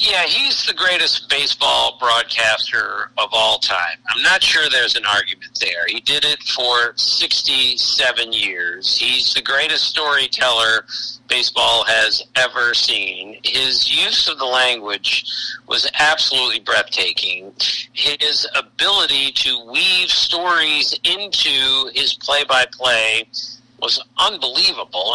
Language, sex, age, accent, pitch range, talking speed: English, male, 50-69, American, 130-185 Hz, 115 wpm